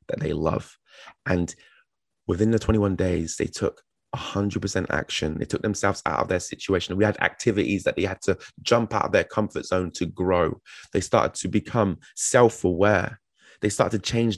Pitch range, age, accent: 95-115 Hz, 20-39, British